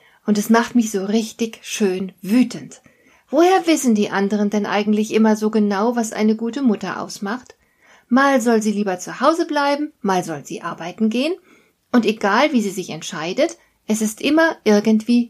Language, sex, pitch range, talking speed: German, female, 205-275 Hz, 175 wpm